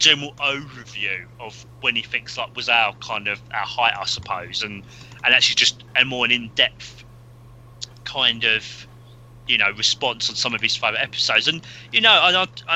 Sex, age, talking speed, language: male, 30-49, 175 wpm, English